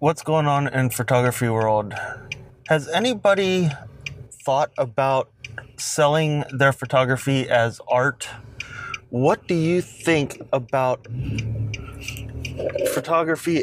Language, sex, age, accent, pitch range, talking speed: English, male, 30-49, American, 120-145 Hz, 95 wpm